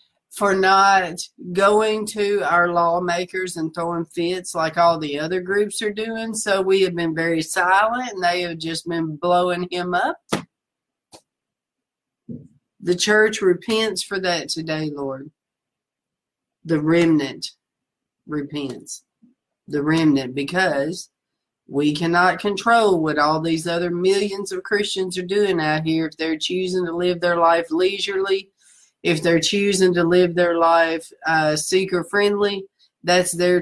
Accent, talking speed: American, 135 wpm